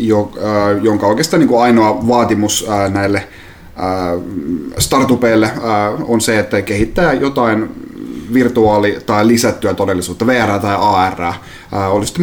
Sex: male